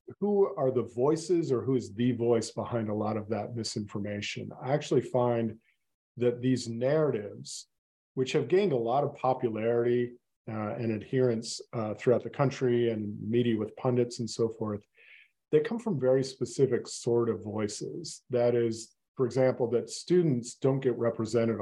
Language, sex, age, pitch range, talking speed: English, male, 40-59, 110-130 Hz, 165 wpm